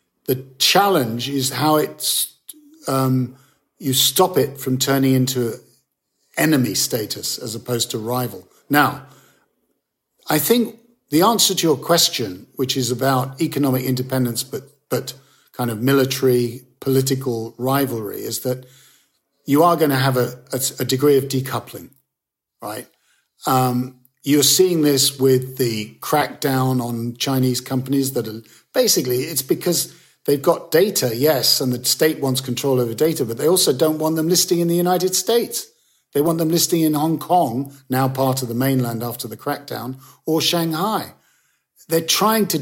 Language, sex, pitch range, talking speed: English, male, 130-170 Hz, 150 wpm